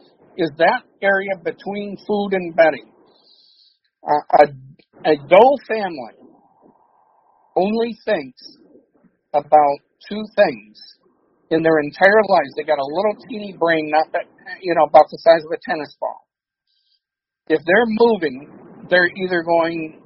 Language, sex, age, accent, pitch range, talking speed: English, male, 50-69, American, 160-210 Hz, 130 wpm